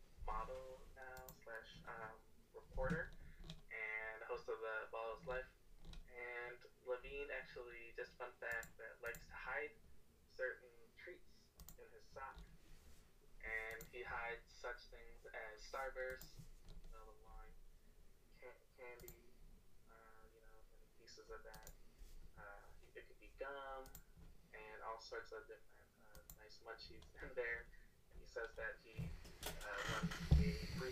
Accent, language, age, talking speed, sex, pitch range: American, English, 20-39, 125 wpm, male, 110-165 Hz